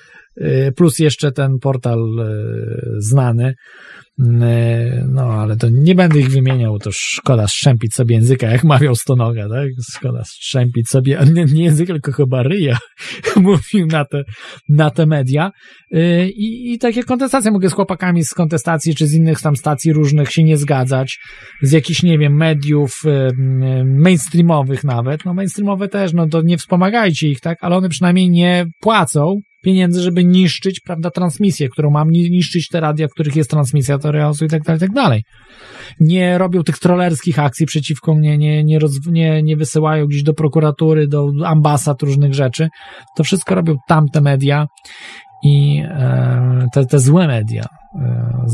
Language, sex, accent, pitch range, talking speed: Polish, male, native, 135-175 Hz, 160 wpm